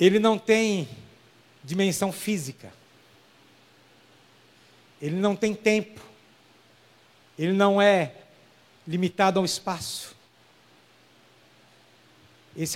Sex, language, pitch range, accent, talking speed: male, Portuguese, 145-200 Hz, Brazilian, 75 wpm